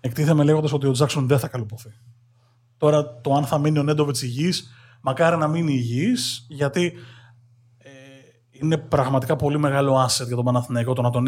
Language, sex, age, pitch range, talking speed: Greek, male, 20-39, 125-150 Hz, 170 wpm